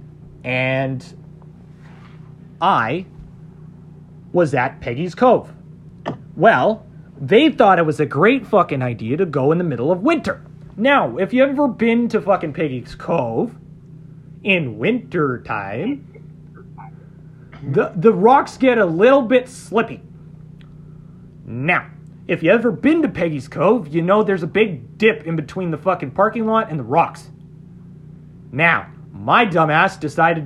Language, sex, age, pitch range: English, male, 30-49, 155-210 Hz